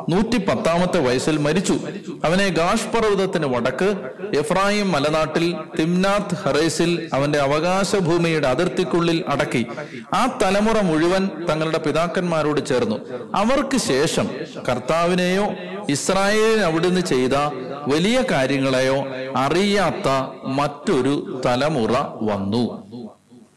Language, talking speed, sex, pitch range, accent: Malayalam, 85 wpm, male, 145-200 Hz, native